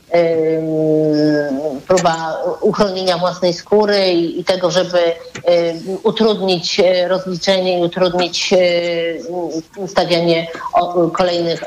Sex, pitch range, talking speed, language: female, 180-210 Hz, 70 wpm, Polish